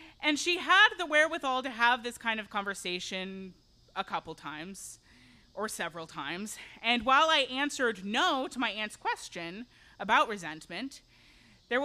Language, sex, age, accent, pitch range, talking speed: English, female, 20-39, American, 190-260 Hz, 145 wpm